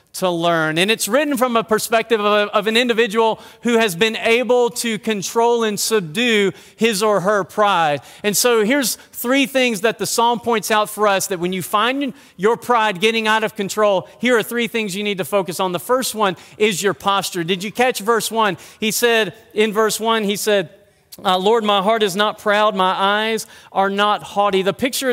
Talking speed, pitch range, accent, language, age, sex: 210 wpm, 195-235 Hz, American, English, 40-59, male